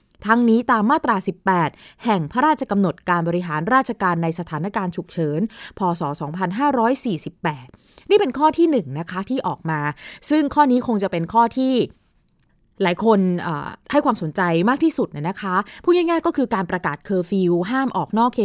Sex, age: female, 20-39